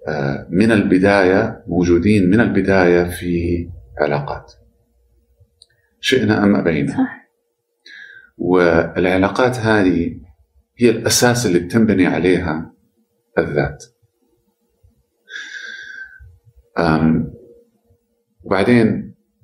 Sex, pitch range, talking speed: male, 80-115 Hz, 60 wpm